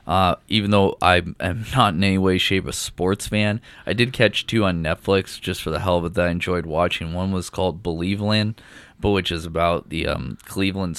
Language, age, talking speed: English, 20-39, 225 wpm